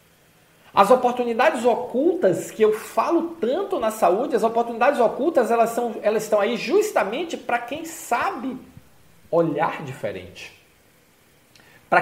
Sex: male